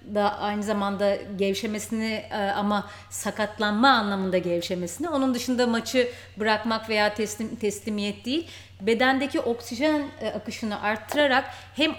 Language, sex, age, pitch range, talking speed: Turkish, female, 30-49, 205-265 Hz, 105 wpm